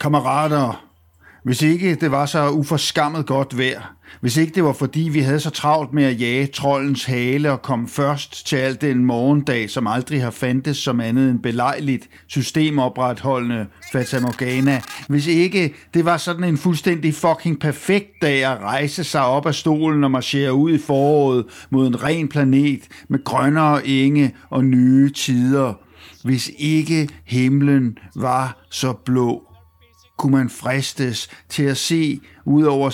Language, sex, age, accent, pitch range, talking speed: Danish, male, 60-79, native, 125-150 Hz, 155 wpm